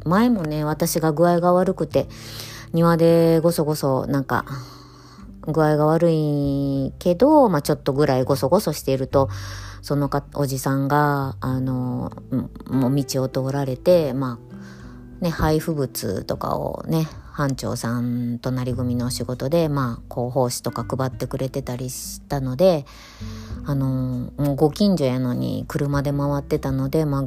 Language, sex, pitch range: Japanese, male, 125-160 Hz